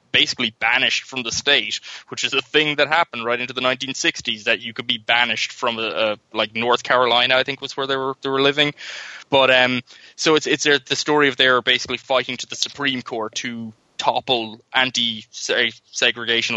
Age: 20-39